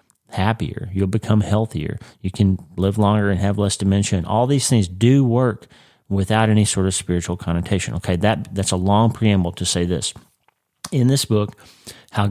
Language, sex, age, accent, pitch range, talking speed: English, male, 40-59, American, 95-110 Hz, 180 wpm